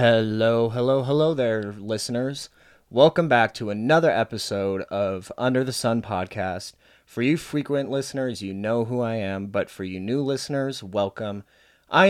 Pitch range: 95-115 Hz